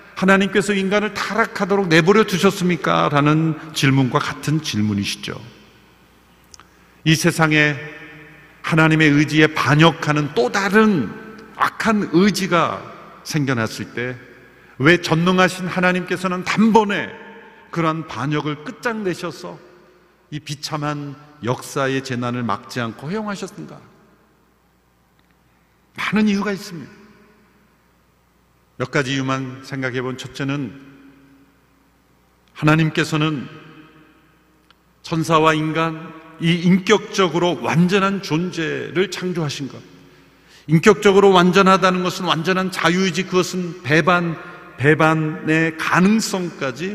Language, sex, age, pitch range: Korean, male, 50-69, 150-195 Hz